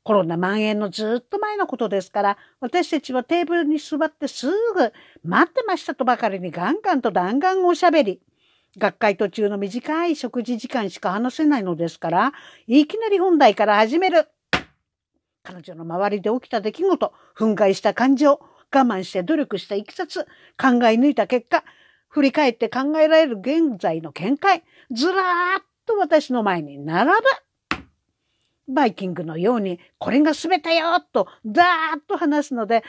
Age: 50-69